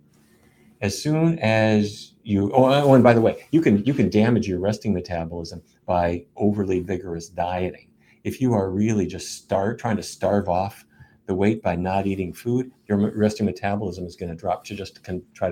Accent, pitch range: American, 90-110 Hz